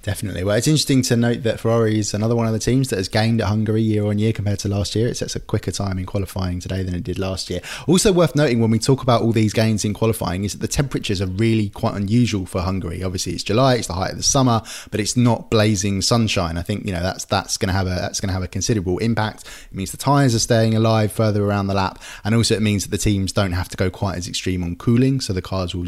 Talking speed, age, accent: 285 wpm, 20-39, British